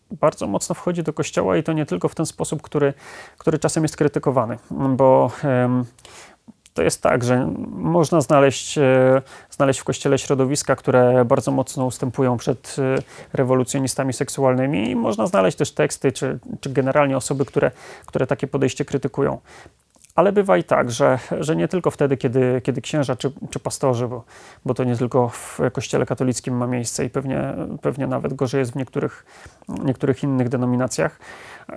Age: 30-49